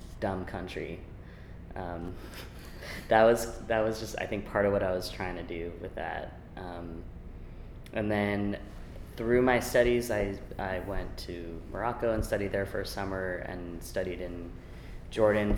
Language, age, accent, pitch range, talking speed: English, 20-39, American, 90-110 Hz, 160 wpm